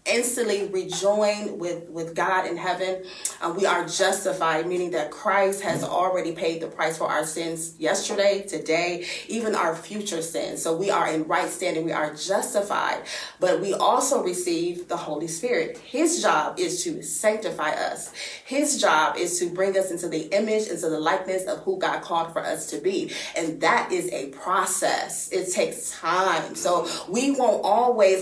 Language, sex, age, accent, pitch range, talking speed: English, female, 30-49, American, 165-205 Hz, 175 wpm